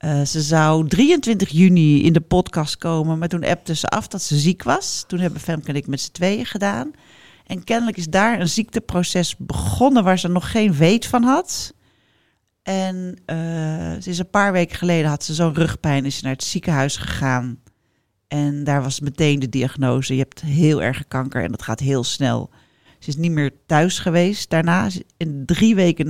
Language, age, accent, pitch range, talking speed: Dutch, 40-59, Dutch, 140-180 Hz, 190 wpm